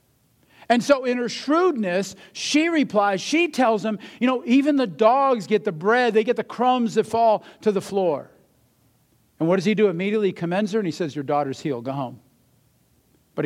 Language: English